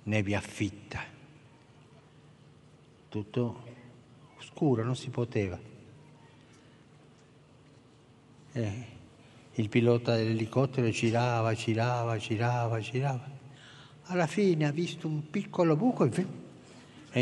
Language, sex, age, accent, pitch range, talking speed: Italian, male, 60-79, native, 110-145 Hz, 85 wpm